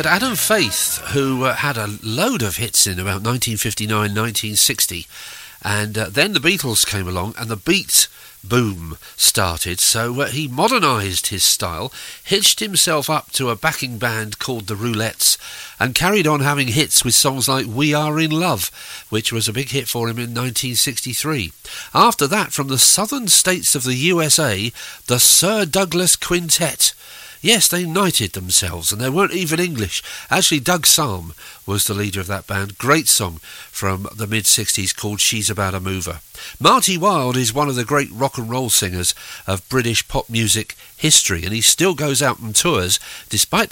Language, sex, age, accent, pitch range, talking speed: English, male, 50-69, British, 105-155 Hz, 175 wpm